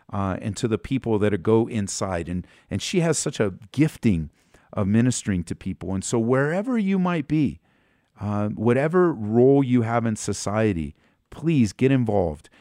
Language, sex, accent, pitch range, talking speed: English, male, American, 85-120 Hz, 170 wpm